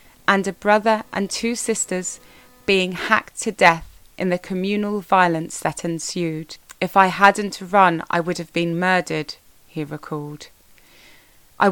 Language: English